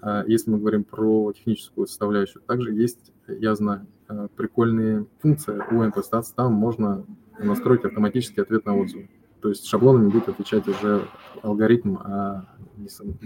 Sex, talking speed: male, 130 wpm